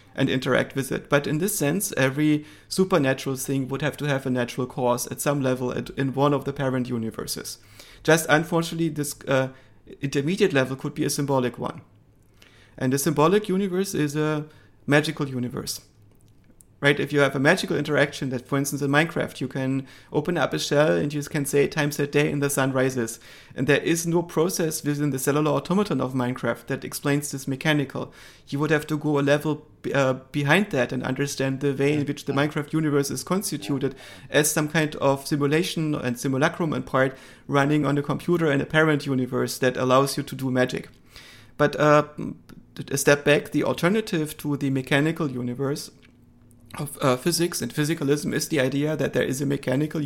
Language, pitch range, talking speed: English, 130-150 Hz, 190 wpm